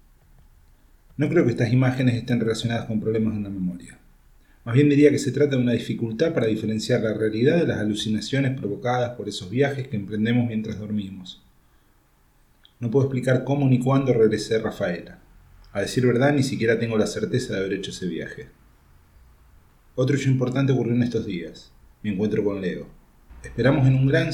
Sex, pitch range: male, 95-125 Hz